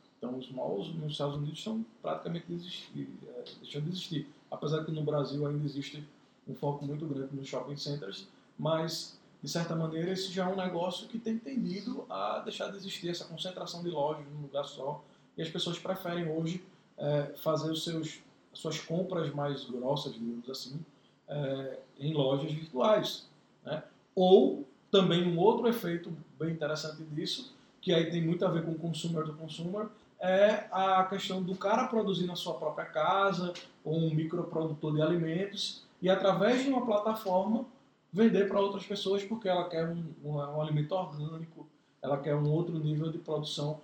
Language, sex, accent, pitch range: Portuguese, male, Brazilian, 150-185 Hz